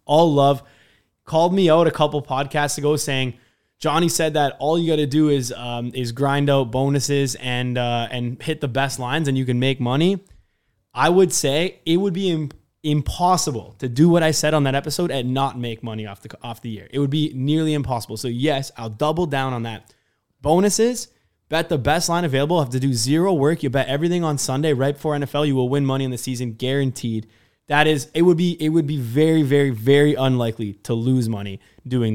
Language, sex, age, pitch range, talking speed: English, male, 20-39, 120-150 Hz, 215 wpm